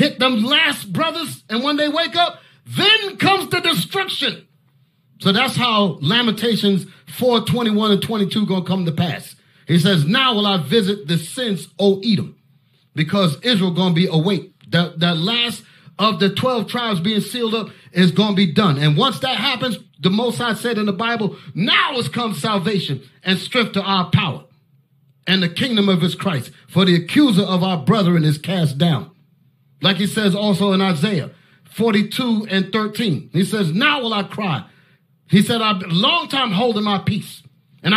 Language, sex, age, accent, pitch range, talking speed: English, male, 40-59, American, 165-220 Hz, 190 wpm